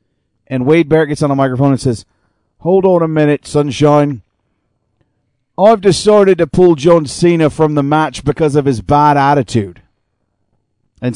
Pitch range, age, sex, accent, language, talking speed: 115-145 Hz, 40-59, male, American, English, 155 wpm